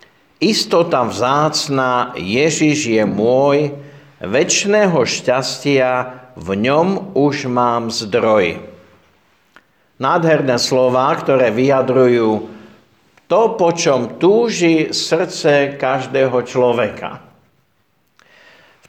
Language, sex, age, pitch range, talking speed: Slovak, male, 50-69, 125-160 Hz, 80 wpm